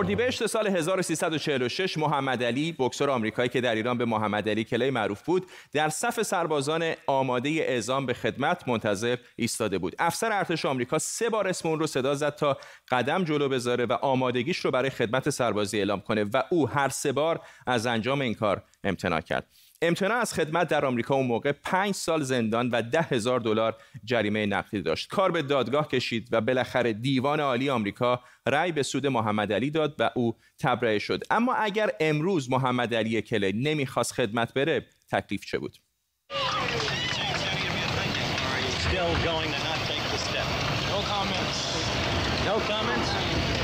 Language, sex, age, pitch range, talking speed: Persian, male, 30-49, 115-155 Hz, 145 wpm